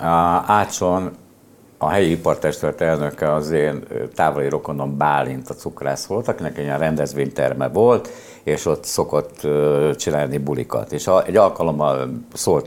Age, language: 60-79, Hungarian